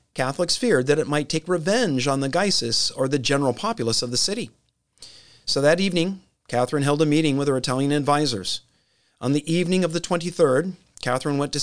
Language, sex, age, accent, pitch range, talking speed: English, male, 40-59, American, 120-155 Hz, 190 wpm